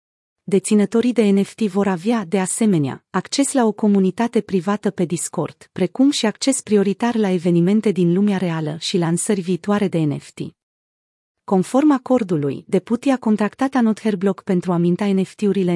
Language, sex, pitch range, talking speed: Romanian, female, 175-225 Hz, 150 wpm